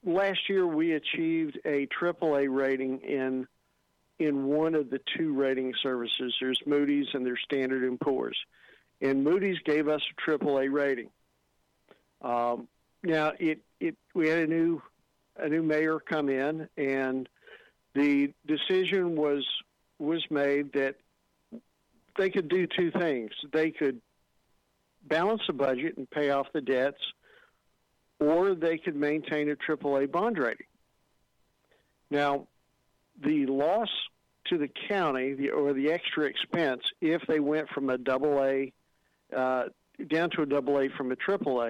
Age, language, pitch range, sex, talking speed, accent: 50-69, English, 135-165 Hz, male, 140 wpm, American